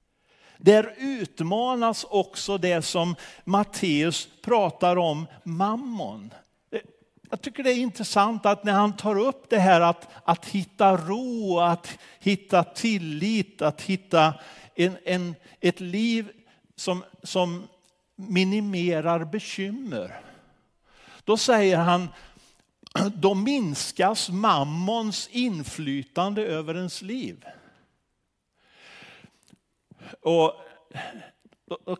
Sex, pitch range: male, 170-210 Hz